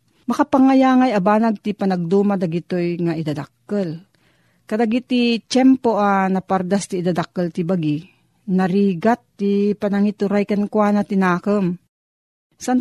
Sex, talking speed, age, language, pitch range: female, 105 wpm, 40-59, Filipino, 175-230 Hz